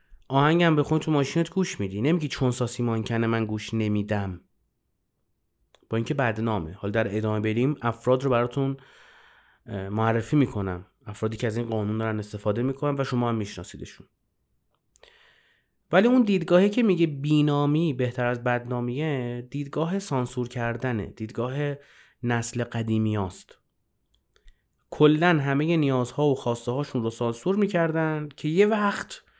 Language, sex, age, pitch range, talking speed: Persian, male, 30-49, 110-155 Hz, 135 wpm